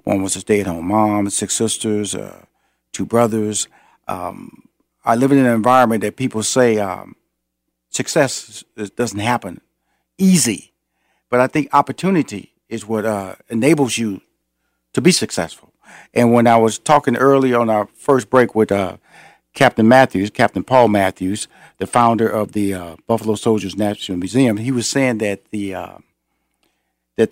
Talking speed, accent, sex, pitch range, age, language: 155 wpm, American, male, 105-130 Hz, 50-69, English